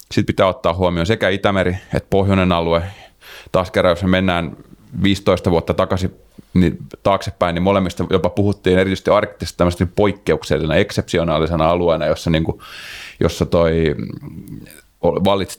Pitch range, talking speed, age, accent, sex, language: 85-95 Hz, 130 wpm, 30-49, native, male, Finnish